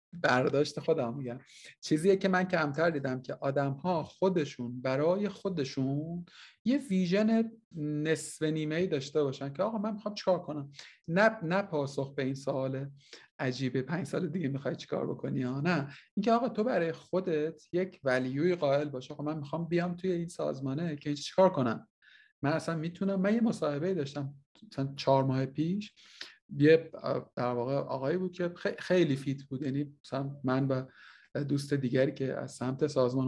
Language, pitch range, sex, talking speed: Persian, 135-180 Hz, male, 160 wpm